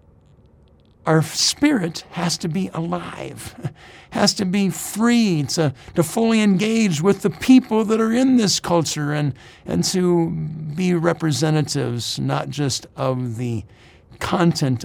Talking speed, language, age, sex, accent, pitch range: 130 wpm, English, 60-79, male, American, 125-175 Hz